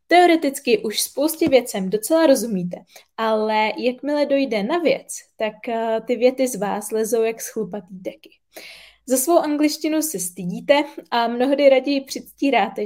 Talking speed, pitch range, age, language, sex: 135 wpm, 210-270 Hz, 20-39, Czech, female